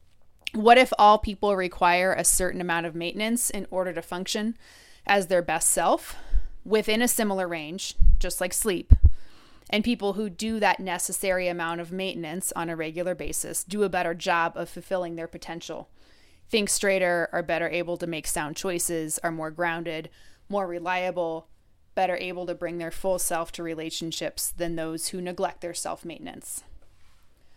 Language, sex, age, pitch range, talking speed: English, female, 30-49, 165-190 Hz, 165 wpm